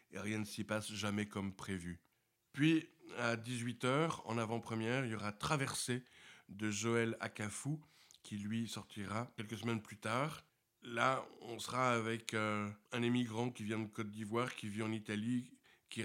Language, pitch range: French, 105-130 Hz